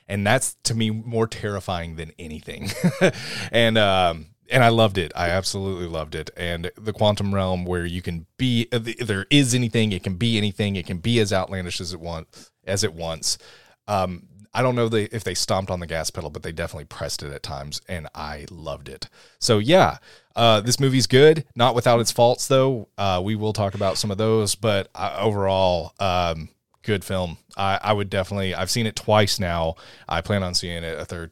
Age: 30-49